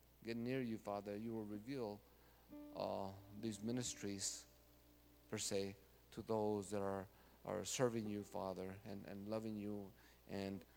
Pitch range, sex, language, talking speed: 95-110 Hz, male, English, 140 wpm